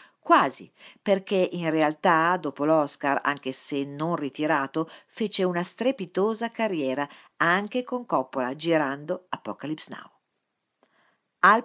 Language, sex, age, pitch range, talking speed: Italian, female, 50-69, 150-195 Hz, 110 wpm